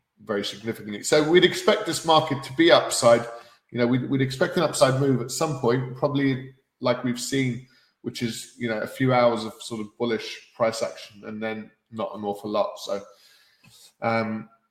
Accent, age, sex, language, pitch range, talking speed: British, 20-39, male, English, 115-135 Hz, 190 wpm